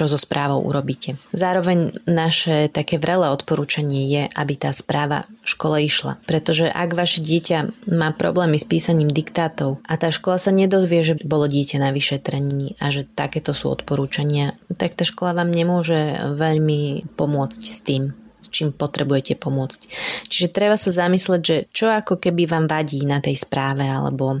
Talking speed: 160 wpm